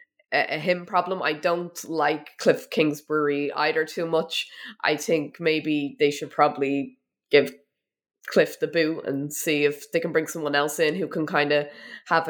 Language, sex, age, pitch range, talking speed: English, female, 20-39, 150-175 Hz, 170 wpm